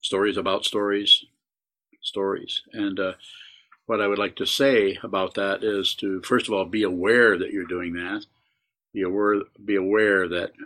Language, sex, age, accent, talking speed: English, male, 50-69, American, 170 wpm